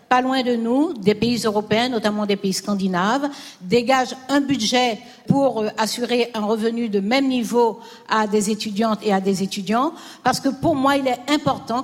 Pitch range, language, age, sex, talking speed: 215-270 Hz, French, 60-79, female, 175 wpm